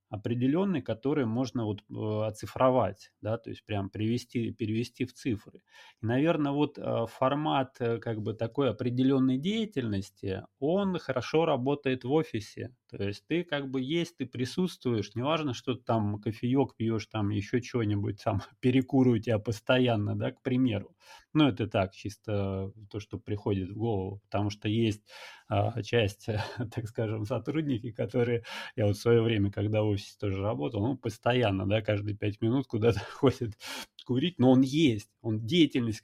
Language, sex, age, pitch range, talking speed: Russian, male, 30-49, 105-130 Hz, 150 wpm